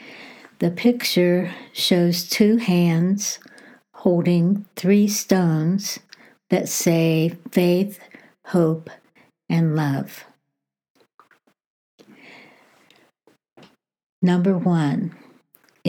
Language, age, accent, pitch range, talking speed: English, 60-79, American, 165-195 Hz, 60 wpm